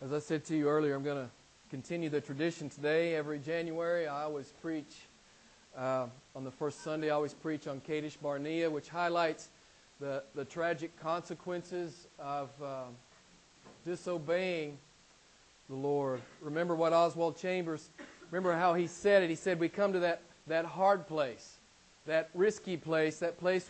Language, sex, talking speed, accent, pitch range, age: English, male, 160 wpm, American, 150-185 Hz, 40-59